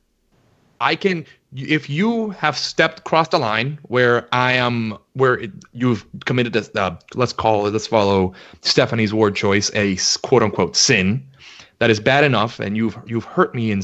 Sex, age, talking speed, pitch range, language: male, 30-49, 175 wpm, 110-155 Hz, English